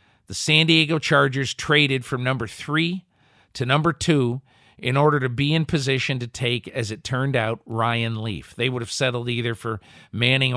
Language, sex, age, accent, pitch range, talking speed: English, male, 50-69, American, 120-145 Hz, 180 wpm